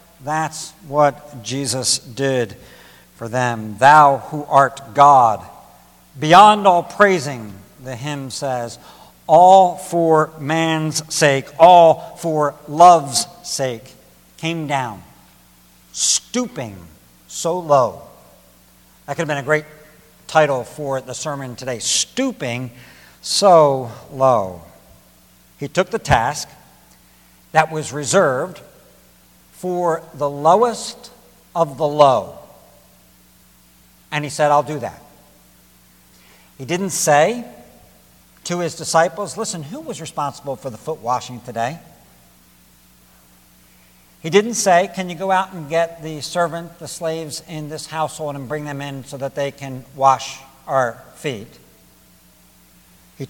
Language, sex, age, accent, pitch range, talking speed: English, male, 60-79, American, 105-160 Hz, 120 wpm